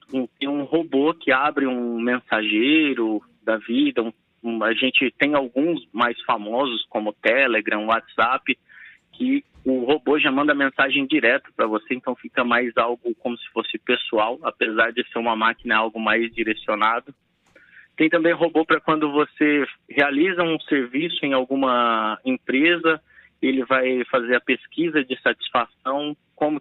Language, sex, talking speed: Portuguese, male, 140 wpm